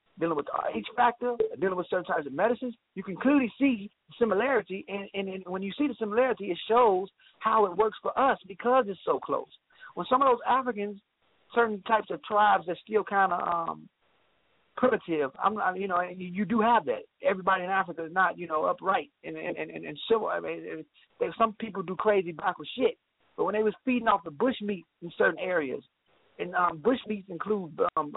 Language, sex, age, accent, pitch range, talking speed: English, male, 40-59, American, 185-235 Hz, 215 wpm